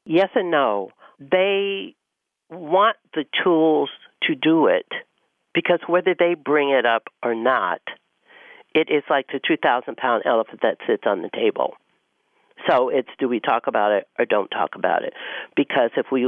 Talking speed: 165 wpm